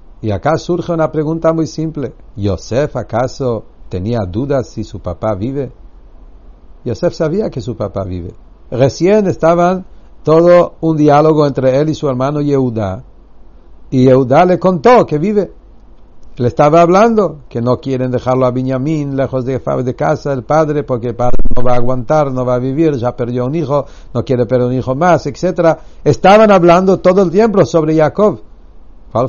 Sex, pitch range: male, 110-145 Hz